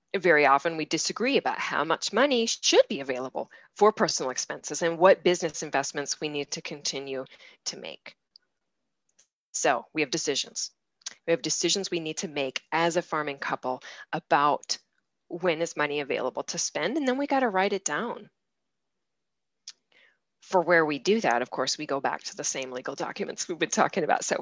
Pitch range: 150-205 Hz